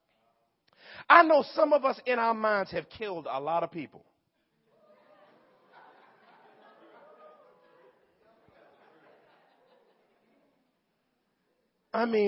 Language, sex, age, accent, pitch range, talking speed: English, male, 40-59, American, 180-245 Hz, 75 wpm